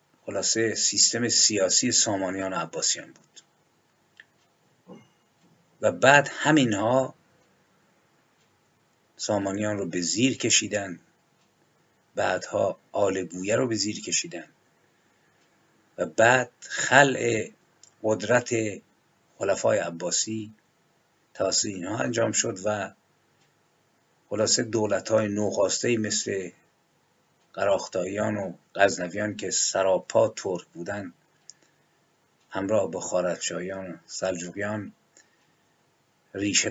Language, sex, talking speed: Persian, male, 80 wpm